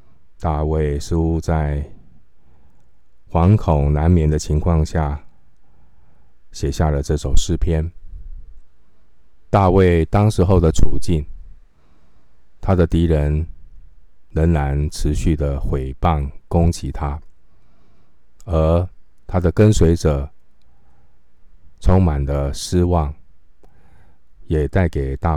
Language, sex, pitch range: Chinese, male, 70-85 Hz